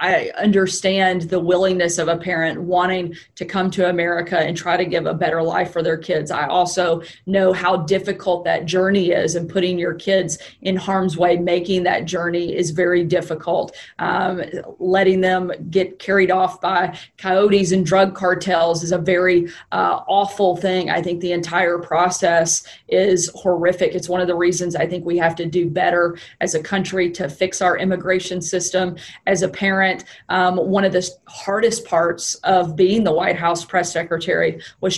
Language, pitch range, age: English, 175-190 Hz, 30-49